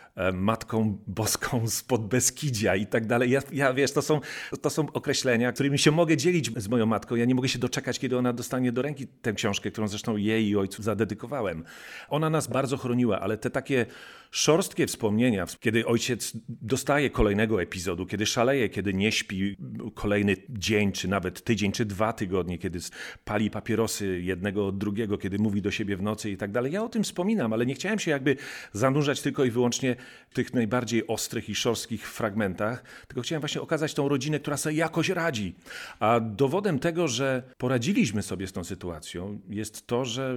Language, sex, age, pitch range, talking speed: Polish, male, 40-59, 105-135 Hz, 185 wpm